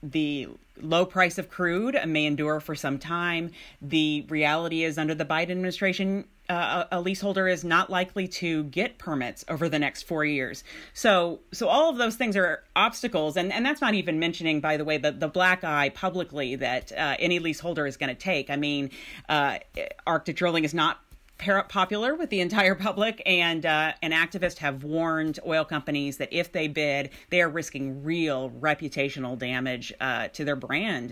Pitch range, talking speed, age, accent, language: 145-185 Hz, 185 wpm, 40-59, American, English